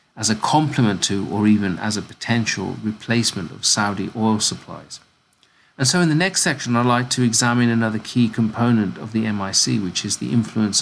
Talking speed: 190 wpm